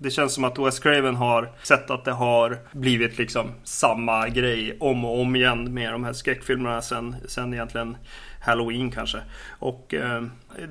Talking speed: 165 wpm